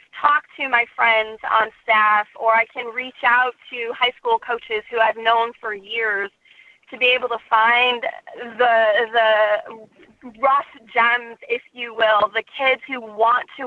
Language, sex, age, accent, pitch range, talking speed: English, female, 30-49, American, 225-265 Hz, 160 wpm